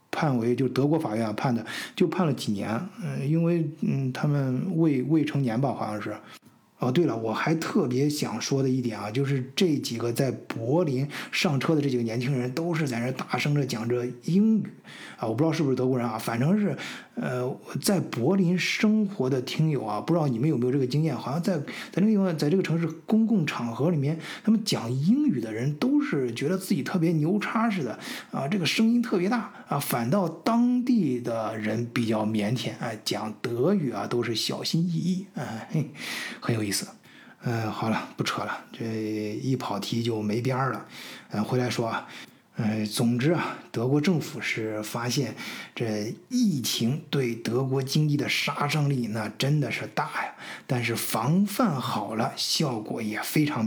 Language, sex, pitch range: Chinese, male, 120-165 Hz